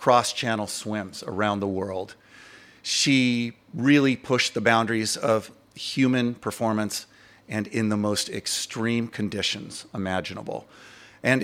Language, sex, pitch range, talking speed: English, male, 105-125 Hz, 110 wpm